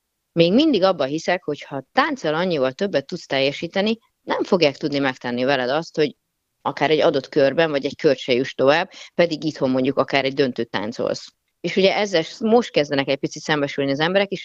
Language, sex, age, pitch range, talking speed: Hungarian, female, 30-49, 140-180 Hz, 185 wpm